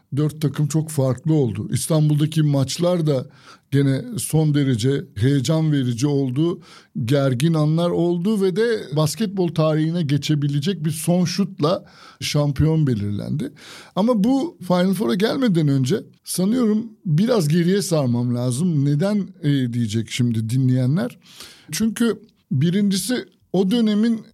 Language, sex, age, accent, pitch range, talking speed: Turkish, male, 60-79, native, 135-180 Hz, 115 wpm